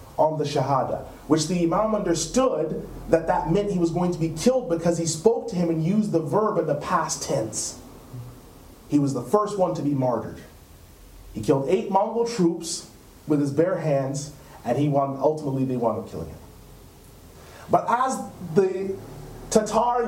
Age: 30-49